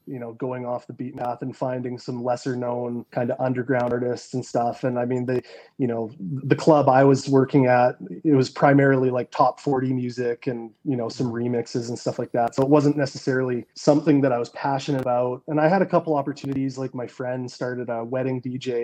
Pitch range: 125-145 Hz